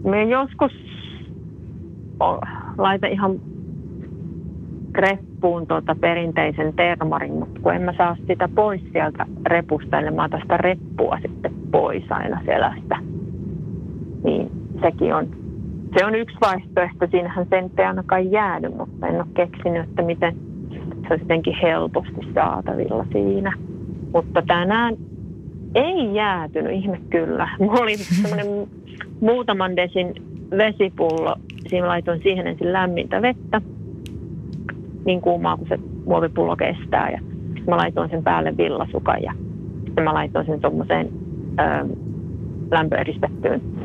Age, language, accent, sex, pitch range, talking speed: 30-49, Finnish, native, female, 165-200 Hz, 110 wpm